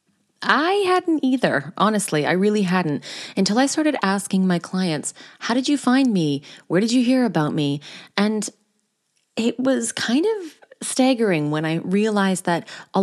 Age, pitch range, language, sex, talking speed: 20-39, 170-230 Hz, English, female, 160 wpm